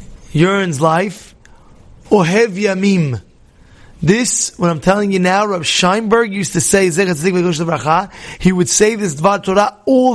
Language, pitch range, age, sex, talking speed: English, 180-240 Hz, 30-49, male, 130 wpm